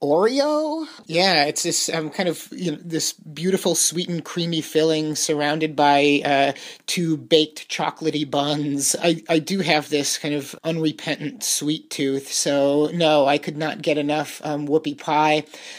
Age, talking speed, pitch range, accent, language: 30-49, 160 wpm, 145-170 Hz, American, English